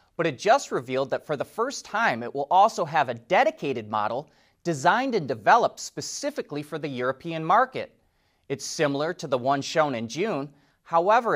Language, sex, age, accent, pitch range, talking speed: English, male, 30-49, American, 130-185 Hz, 175 wpm